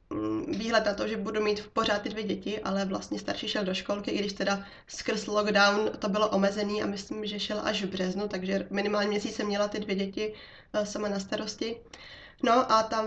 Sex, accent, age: female, native, 20-39